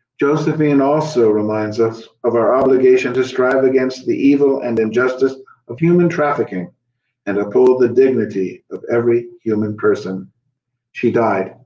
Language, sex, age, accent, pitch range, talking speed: English, male, 50-69, American, 110-130 Hz, 140 wpm